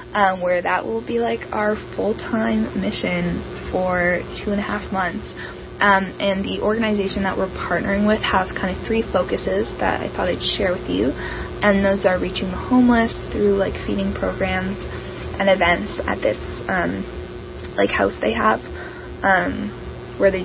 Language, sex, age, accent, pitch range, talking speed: English, female, 10-29, American, 180-210 Hz, 165 wpm